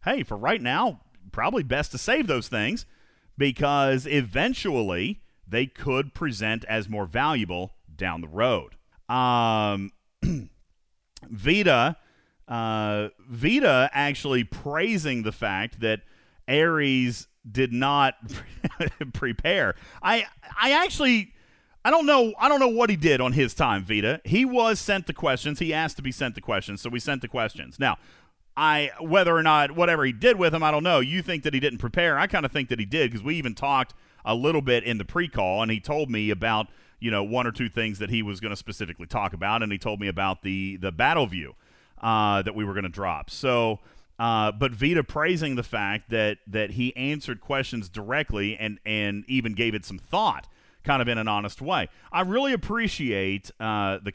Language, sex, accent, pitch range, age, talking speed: English, male, American, 105-145 Hz, 40-59, 185 wpm